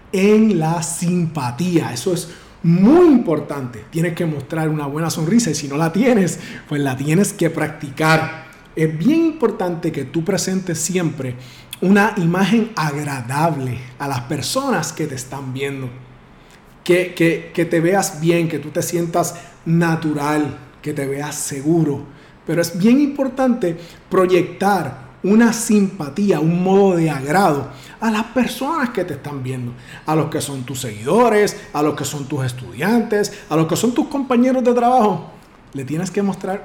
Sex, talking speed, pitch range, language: male, 155 wpm, 150-200 Hz, Spanish